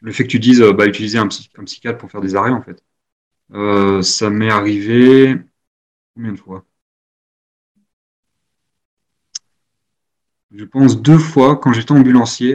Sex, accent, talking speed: male, French, 150 wpm